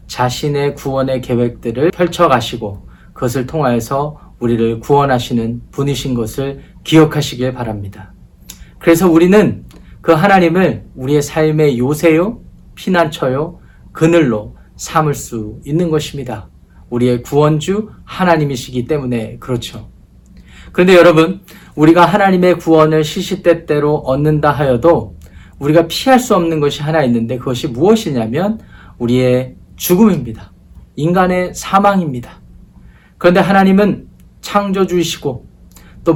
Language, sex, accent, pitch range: Korean, male, native, 125-170 Hz